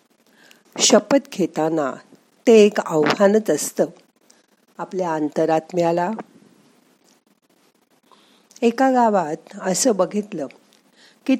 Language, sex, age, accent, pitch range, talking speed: Marathi, female, 50-69, native, 175-235 Hz, 70 wpm